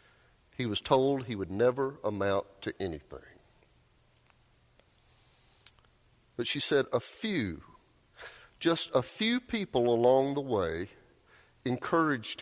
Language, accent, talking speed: English, American, 105 wpm